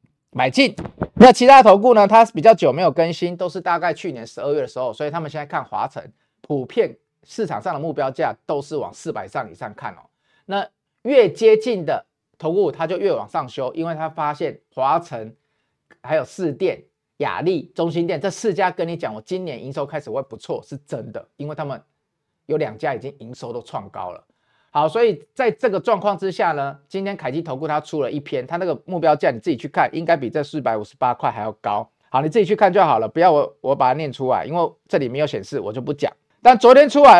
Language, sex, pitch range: Chinese, male, 145-225 Hz